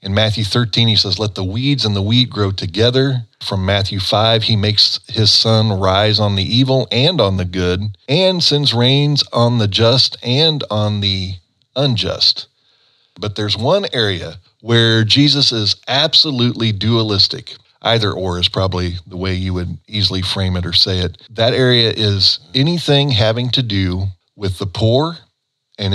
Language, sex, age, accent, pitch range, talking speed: English, male, 40-59, American, 100-125 Hz, 165 wpm